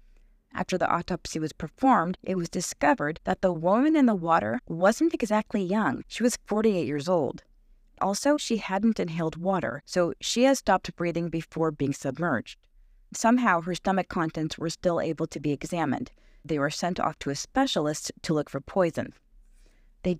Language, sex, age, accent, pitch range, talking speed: English, female, 30-49, American, 160-210 Hz, 170 wpm